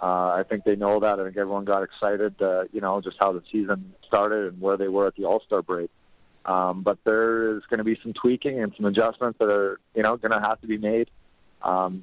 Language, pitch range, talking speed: English, 95-105 Hz, 250 wpm